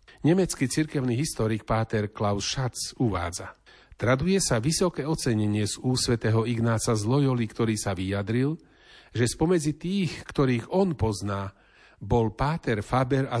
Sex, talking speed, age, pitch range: male, 120 wpm, 40-59, 105-135 Hz